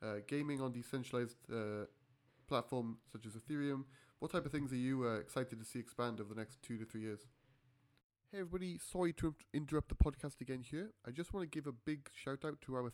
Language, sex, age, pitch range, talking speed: English, male, 30-49, 110-150 Hz, 225 wpm